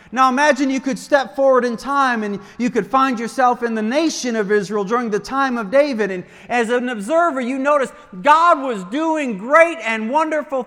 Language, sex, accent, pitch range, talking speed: English, male, American, 190-255 Hz, 195 wpm